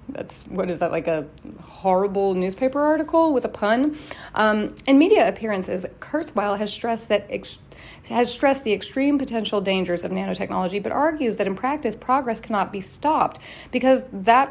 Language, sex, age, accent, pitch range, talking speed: English, female, 30-49, American, 185-250 Hz, 165 wpm